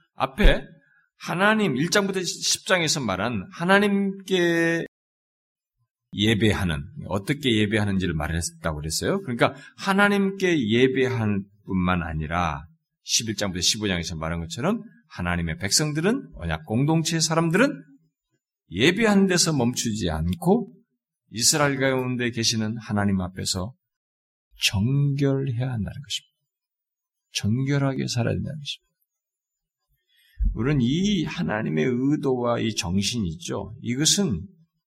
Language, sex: Korean, male